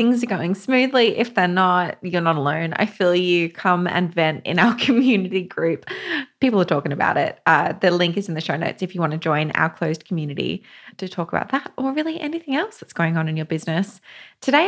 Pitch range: 165-205 Hz